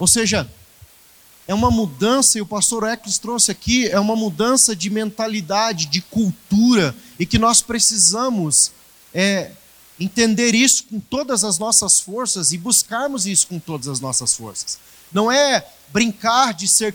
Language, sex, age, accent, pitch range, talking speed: Portuguese, male, 40-59, Brazilian, 185-235 Hz, 150 wpm